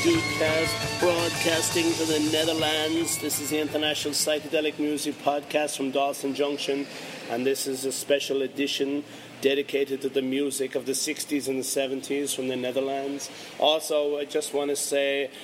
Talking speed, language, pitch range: 150 wpm, English, 140-155 Hz